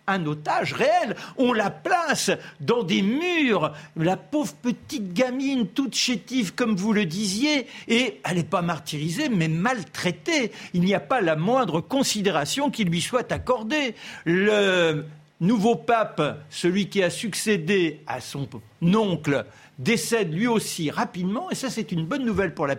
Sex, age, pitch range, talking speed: male, 60-79, 170-240 Hz, 155 wpm